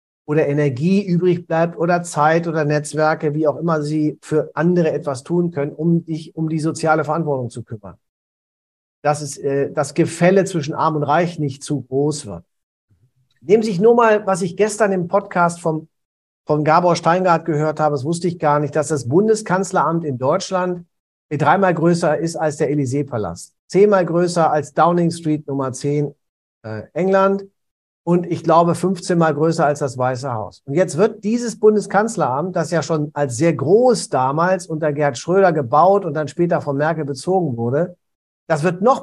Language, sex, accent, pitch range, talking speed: German, male, German, 145-185 Hz, 175 wpm